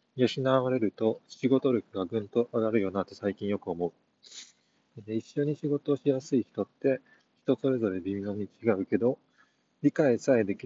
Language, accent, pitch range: Japanese, native, 100-135 Hz